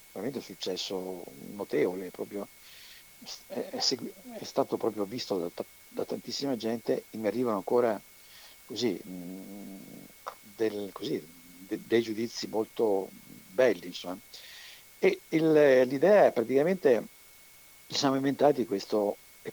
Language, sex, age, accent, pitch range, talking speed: Italian, male, 60-79, native, 100-125 Hz, 115 wpm